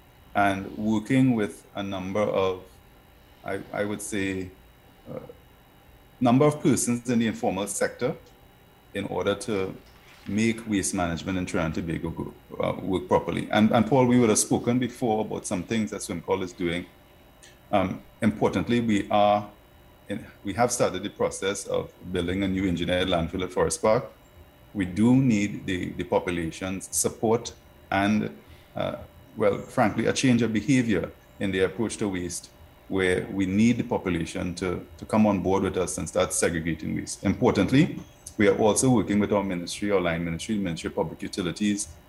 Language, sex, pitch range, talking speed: English, male, 90-115 Hz, 165 wpm